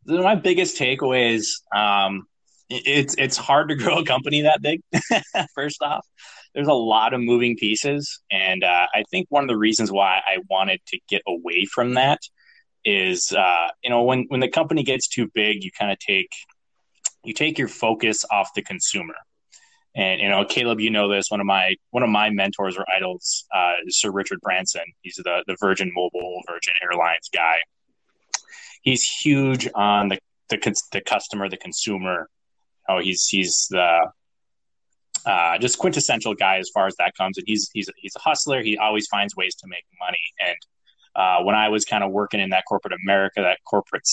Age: 20-39